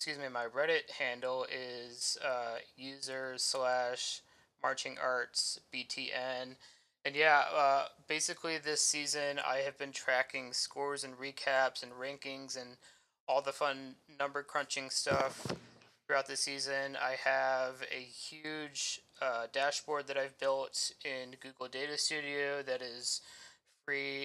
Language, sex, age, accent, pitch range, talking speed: English, male, 20-39, American, 130-145 Hz, 125 wpm